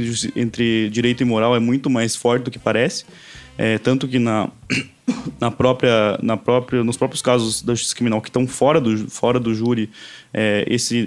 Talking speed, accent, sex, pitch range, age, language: 185 wpm, Brazilian, male, 110-135 Hz, 20-39, Portuguese